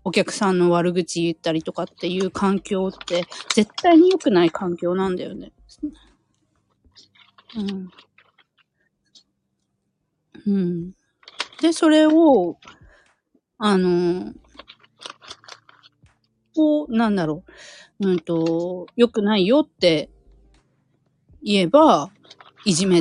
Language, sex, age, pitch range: Japanese, female, 40-59, 170-225 Hz